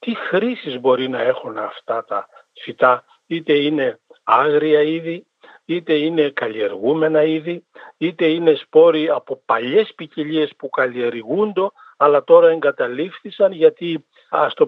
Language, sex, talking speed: Greek, male, 125 wpm